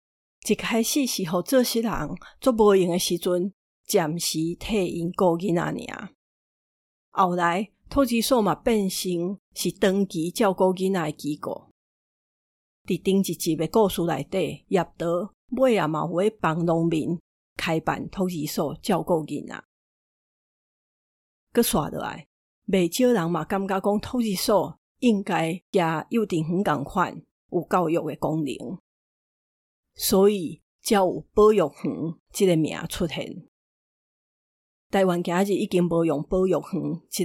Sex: female